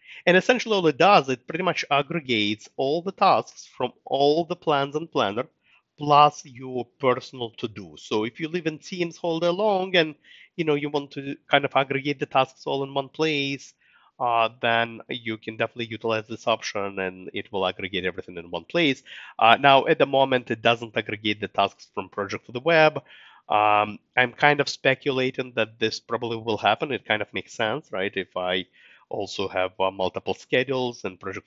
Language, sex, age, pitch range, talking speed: English, male, 30-49, 105-145 Hz, 195 wpm